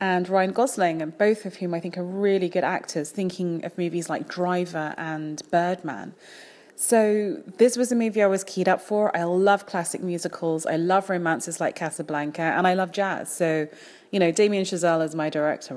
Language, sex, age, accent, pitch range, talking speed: English, female, 30-49, British, 165-200 Hz, 195 wpm